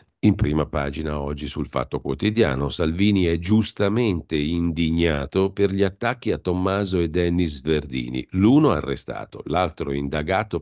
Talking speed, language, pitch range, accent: 130 wpm, Italian, 75-105 Hz, native